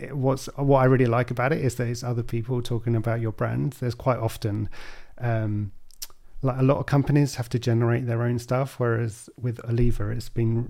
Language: English